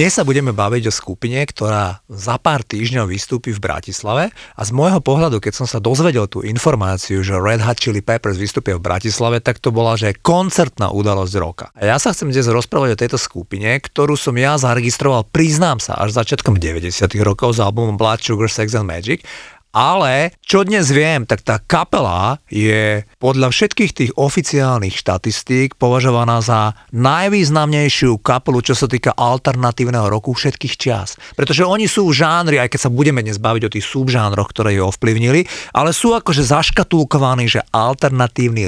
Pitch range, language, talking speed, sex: 110-140 Hz, Slovak, 170 wpm, male